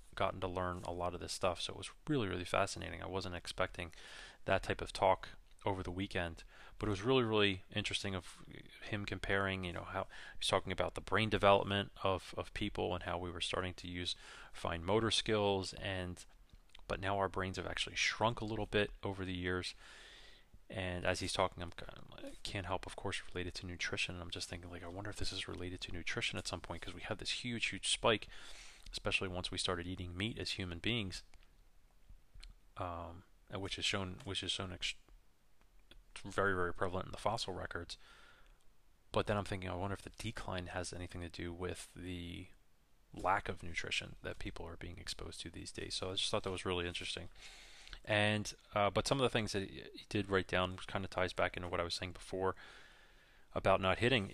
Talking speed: 210 wpm